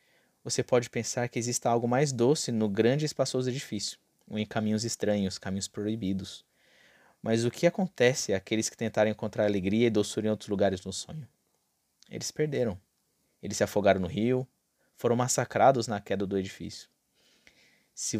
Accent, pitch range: Brazilian, 105-125 Hz